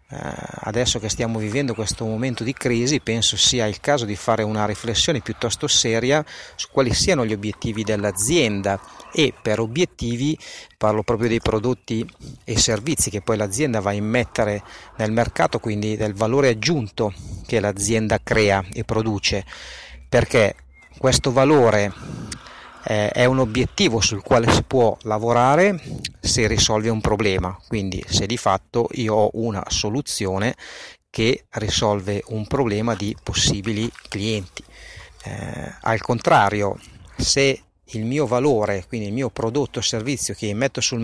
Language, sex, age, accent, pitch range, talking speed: Italian, male, 40-59, native, 105-130 Hz, 140 wpm